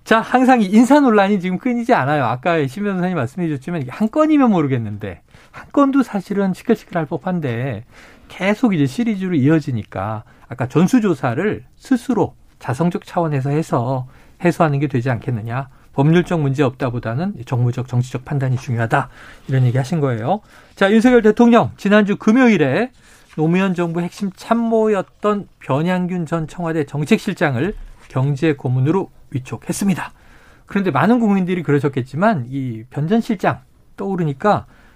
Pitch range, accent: 135-210 Hz, native